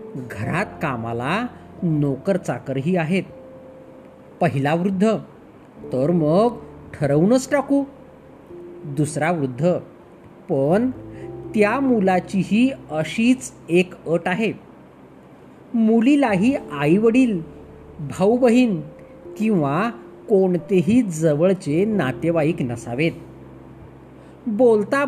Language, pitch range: Marathi, 145-235 Hz